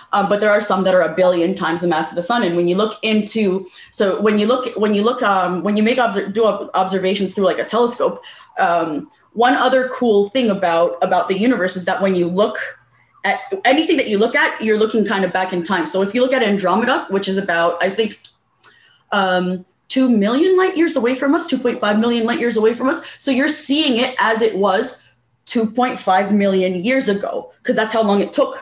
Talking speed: 225 wpm